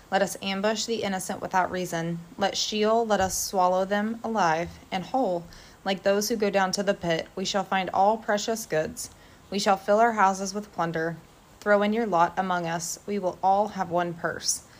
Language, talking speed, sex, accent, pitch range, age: English, 200 wpm, female, American, 175-205 Hz, 20-39